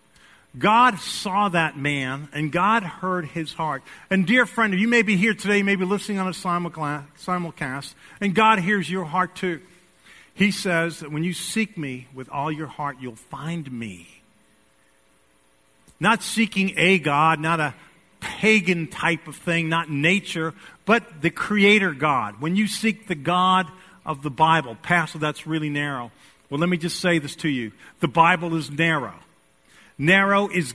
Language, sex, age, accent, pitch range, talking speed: English, male, 50-69, American, 150-205 Hz, 170 wpm